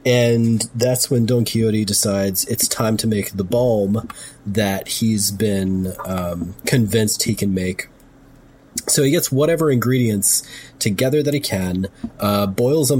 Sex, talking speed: male, 150 wpm